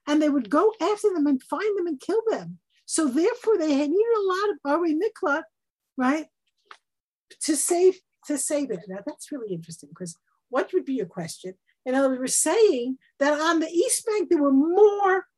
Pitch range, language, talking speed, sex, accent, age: 220-370 Hz, English, 195 wpm, female, American, 50-69